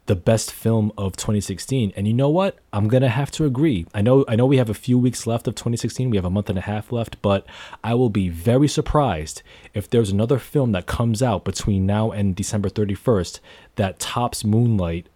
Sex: male